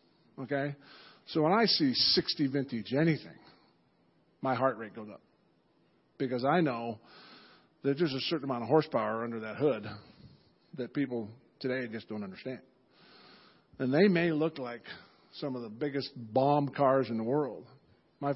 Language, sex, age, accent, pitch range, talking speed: English, male, 50-69, American, 125-175 Hz, 155 wpm